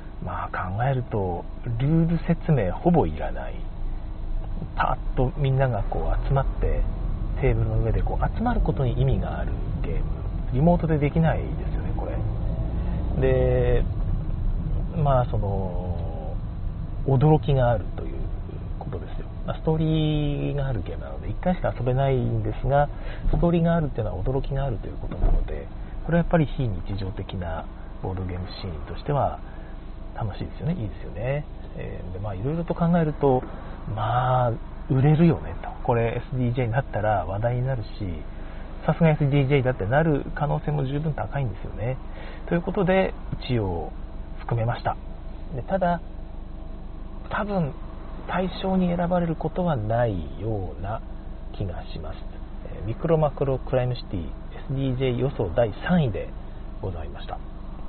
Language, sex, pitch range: Japanese, male, 90-140 Hz